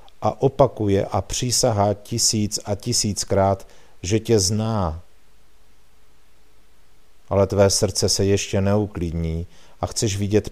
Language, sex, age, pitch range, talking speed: Czech, male, 50-69, 95-110 Hz, 110 wpm